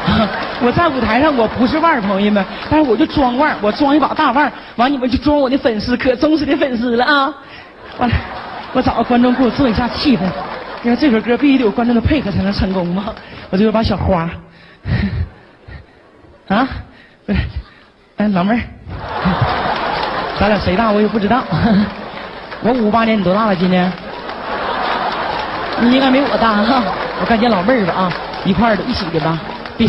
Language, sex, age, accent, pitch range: Chinese, male, 30-49, native, 195-250 Hz